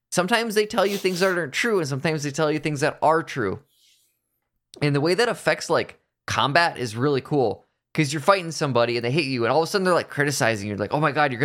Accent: American